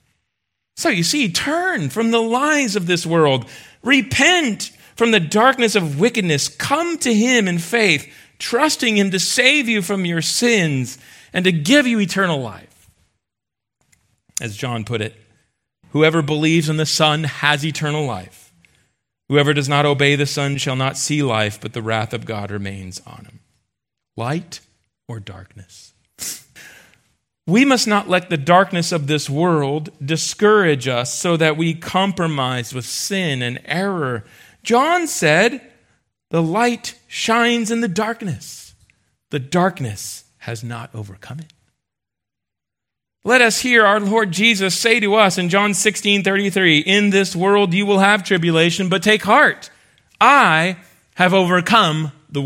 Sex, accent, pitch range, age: male, American, 125-205 Hz, 40-59